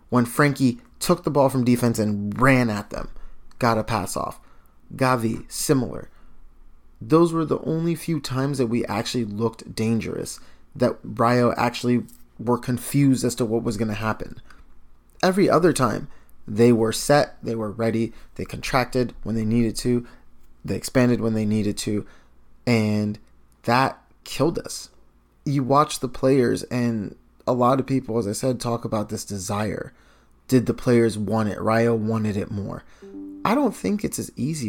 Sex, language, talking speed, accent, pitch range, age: male, English, 165 wpm, American, 110-135 Hz, 20-39